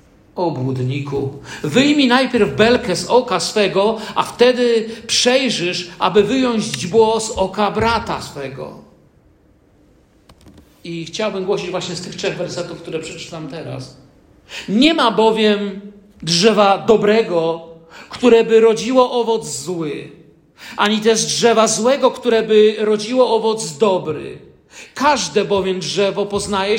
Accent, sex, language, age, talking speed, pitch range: native, male, Polish, 50-69, 115 wpm, 180-225 Hz